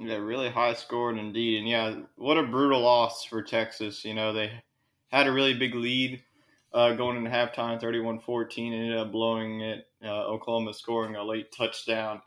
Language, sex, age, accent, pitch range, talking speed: English, male, 20-39, American, 110-130 Hz, 180 wpm